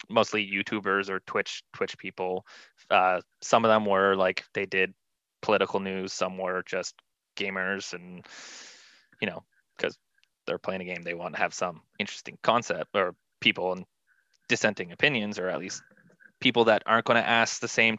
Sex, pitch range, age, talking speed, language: male, 95-115 Hz, 20-39, 170 wpm, English